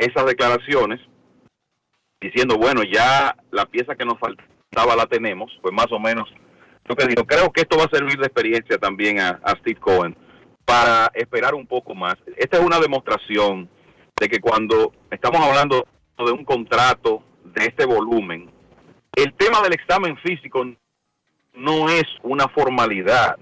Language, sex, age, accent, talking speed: Spanish, male, 40-59, Venezuelan, 155 wpm